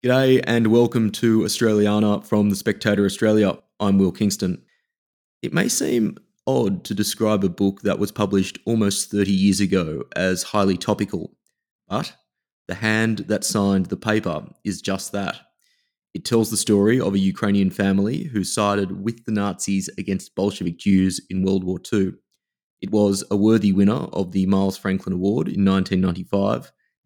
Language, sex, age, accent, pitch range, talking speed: English, male, 20-39, Australian, 95-110 Hz, 160 wpm